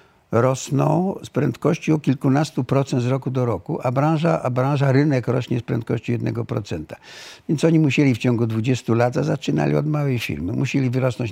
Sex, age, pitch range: male, 60-79, 115-145 Hz